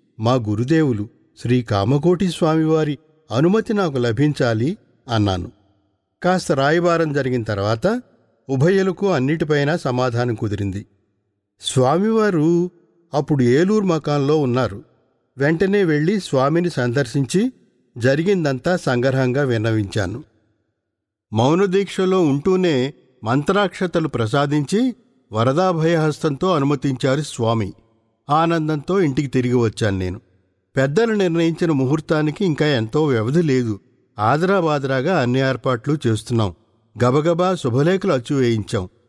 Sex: male